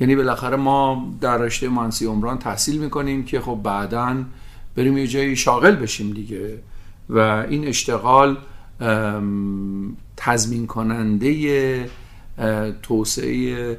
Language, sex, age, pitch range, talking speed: Persian, male, 50-69, 110-140 Hz, 105 wpm